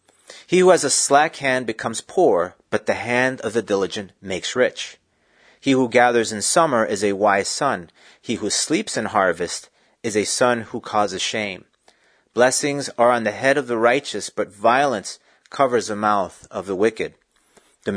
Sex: male